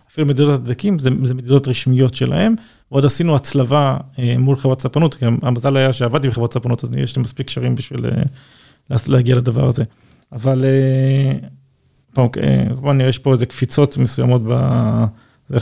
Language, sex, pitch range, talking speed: Hebrew, male, 120-140 Hz, 165 wpm